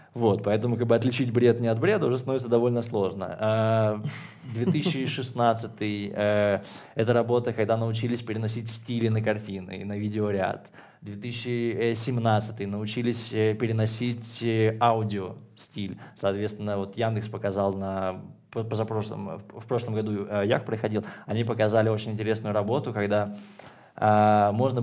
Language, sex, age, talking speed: Russian, male, 20-39, 100 wpm